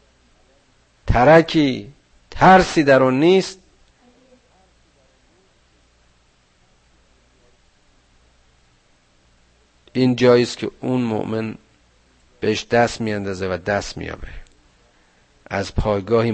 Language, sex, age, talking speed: Persian, male, 50-69, 75 wpm